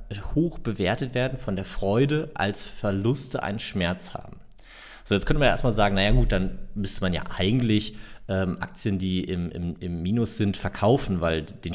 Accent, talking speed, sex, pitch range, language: German, 185 wpm, male, 95-125 Hz, German